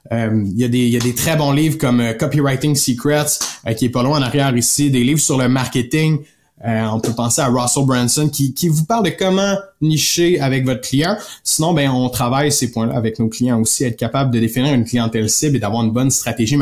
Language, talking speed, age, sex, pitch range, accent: French, 230 wpm, 30-49, male, 125-155 Hz, Canadian